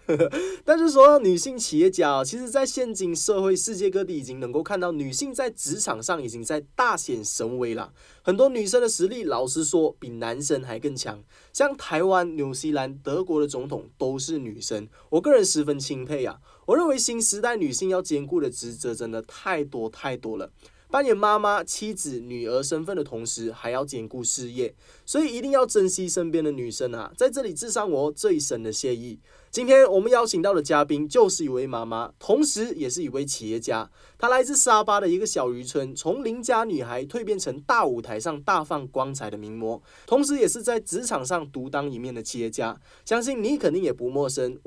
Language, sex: Chinese, male